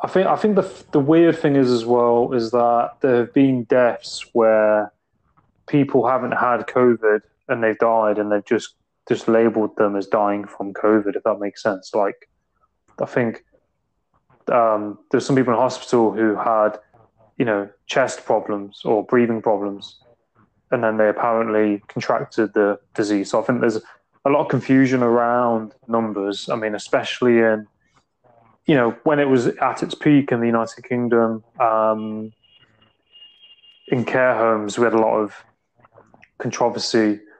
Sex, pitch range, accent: male, 105-120 Hz, British